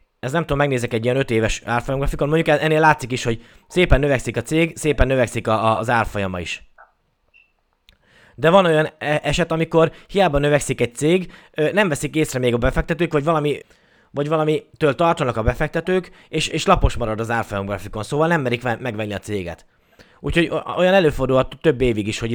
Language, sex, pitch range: Hungarian, male, 115-155 Hz